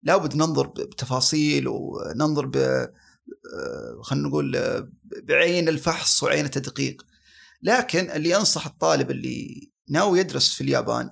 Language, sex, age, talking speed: Arabic, male, 30-49, 110 wpm